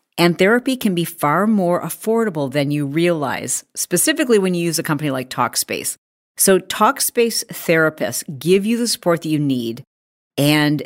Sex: female